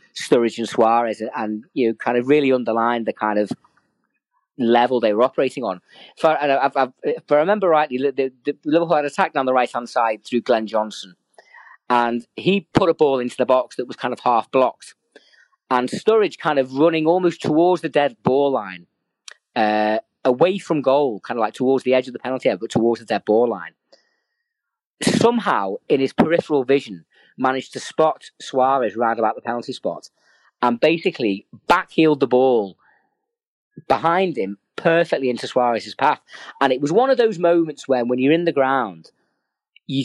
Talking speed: 175 wpm